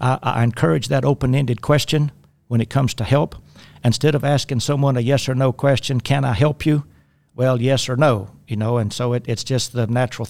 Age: 60-79